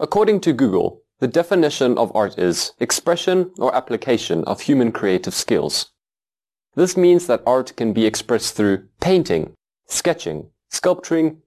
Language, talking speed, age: English, 135 wpm, 30-49